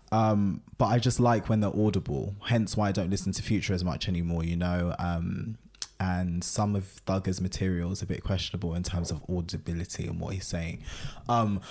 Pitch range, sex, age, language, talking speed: 95-110 Hz, male, 20-39, English, 200 wpm